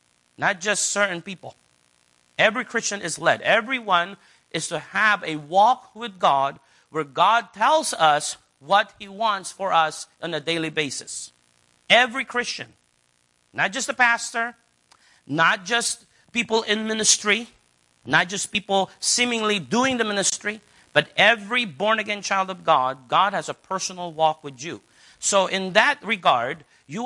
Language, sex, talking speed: English, male, 145 wpm